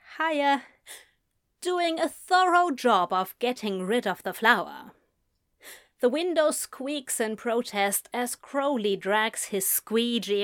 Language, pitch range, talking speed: English, 210-285 Hz, 120 wpm